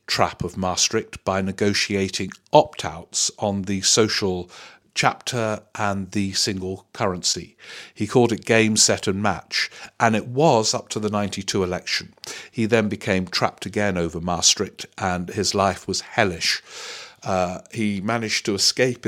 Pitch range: 95-115 Hz